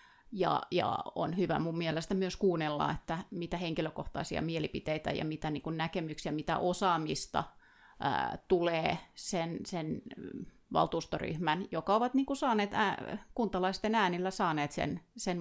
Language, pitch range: Finnish, 160-190 Hz